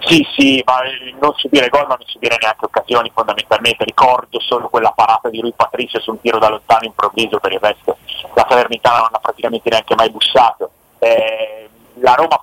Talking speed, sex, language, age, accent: 195 wpm, male, Italian, 30-49, native